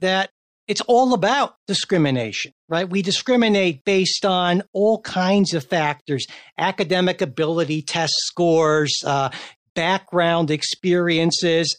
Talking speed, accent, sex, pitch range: 105 wpm, American, male, 155-205 Hz